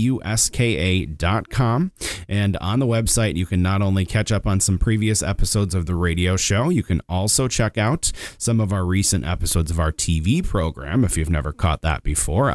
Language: English